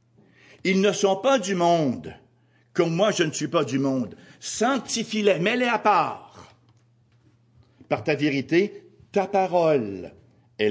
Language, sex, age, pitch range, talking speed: French, male, 60-79, 120-180 Hz, 140 wpm